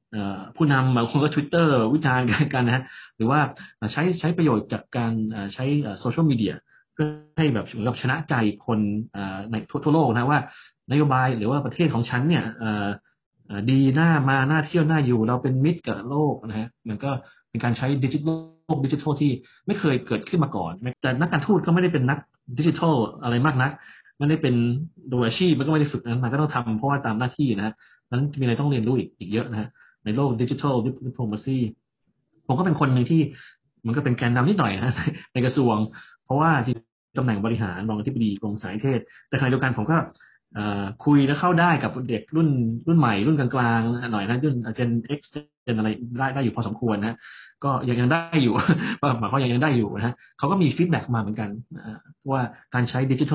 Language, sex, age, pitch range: Thai, male, 30-49, 115-150 Hz